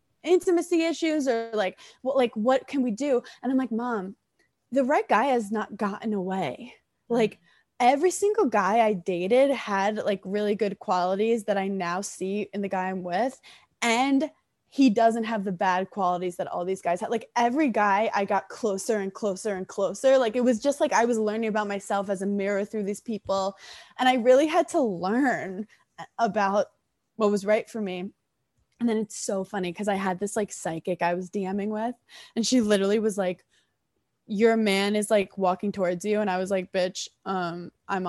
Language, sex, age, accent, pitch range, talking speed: English, female, 20-39, American, 195-245 Hz, 195 wpm